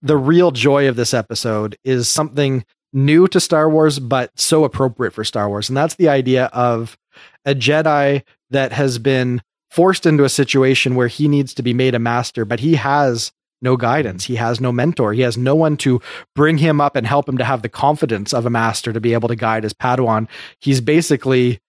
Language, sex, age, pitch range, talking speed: English, male, 30-49, 120-145 Hz, 210 wpm